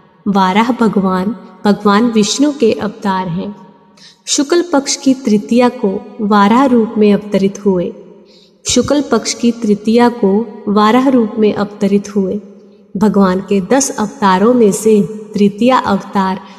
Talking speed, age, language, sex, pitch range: 125 wpm, 20-39, Hindi, female, 200-240 Hz